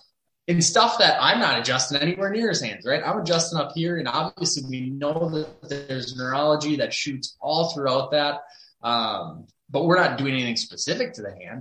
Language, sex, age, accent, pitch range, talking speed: English, male, 20-39, American, 120-155 Hz, 190 wpm